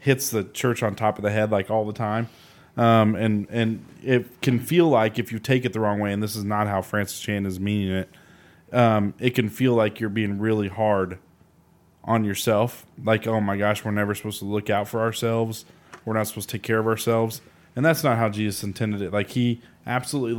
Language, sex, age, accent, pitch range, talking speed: English, male, 20-39, American, 105-120 Hz, 225 wpm